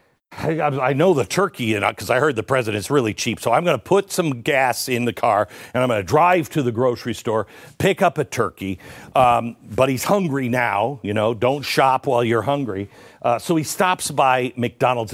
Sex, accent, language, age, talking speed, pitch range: male, American, English, 50-69, 215 wpm, 115-165 Hz